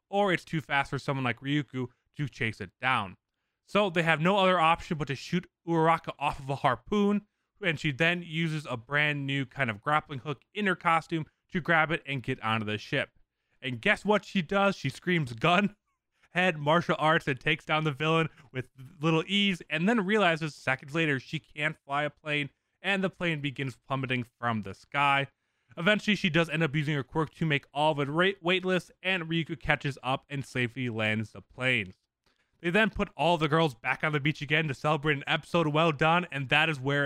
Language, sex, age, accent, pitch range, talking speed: English, male, 20-39, American, 140-180 Hz, 210 wpm